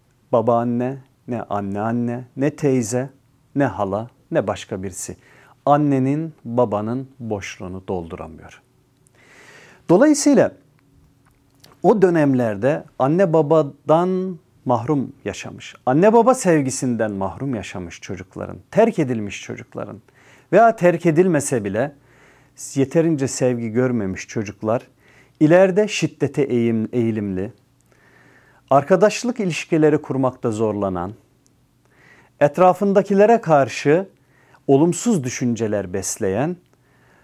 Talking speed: 80 wpm